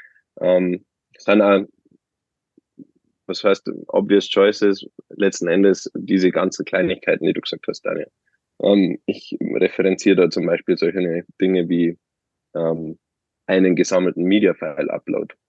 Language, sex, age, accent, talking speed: German, male, 20-39, German, 110 wpm